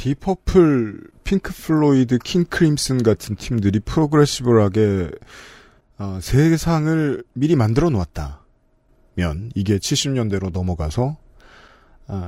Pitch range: 110-175 Hz